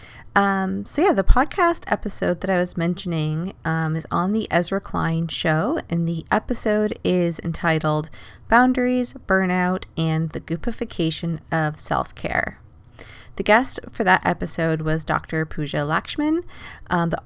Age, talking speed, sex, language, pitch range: 30-49, 140 wpm, female, English, 160-215 Hz